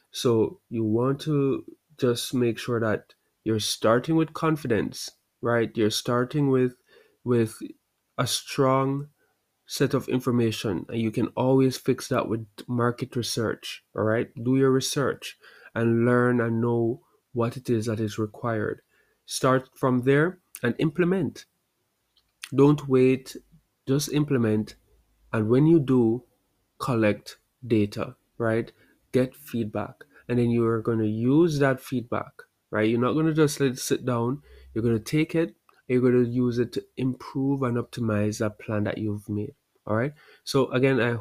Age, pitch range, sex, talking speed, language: 30-49, 110-135 Hz, male, 155 wpm, English